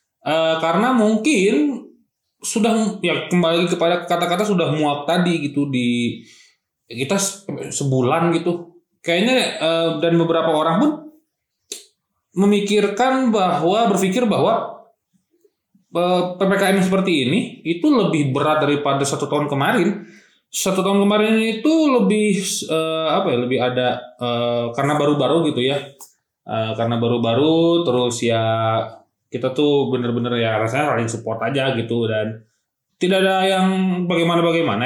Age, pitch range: 20-39, 130-190 Hz